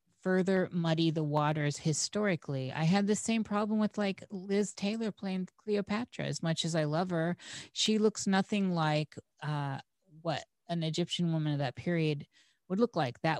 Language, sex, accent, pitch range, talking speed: English, female, American, 150-180 Hz, 170 wpm